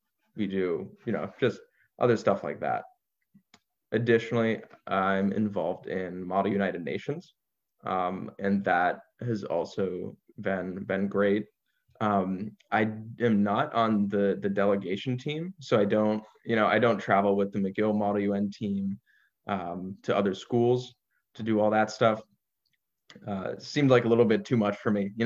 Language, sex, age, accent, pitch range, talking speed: English, male, 20-39, American, 100-115 Hz, 160 wpm